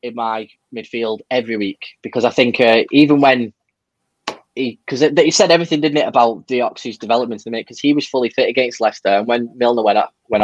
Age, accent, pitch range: 10-29, British, 105-125 Hz